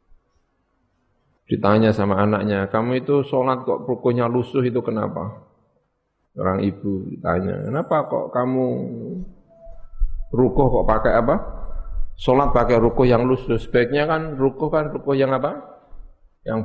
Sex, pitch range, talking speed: male, 95-125 Hz, 125 wpm